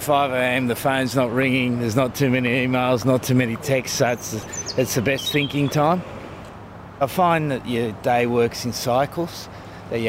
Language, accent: English, Australian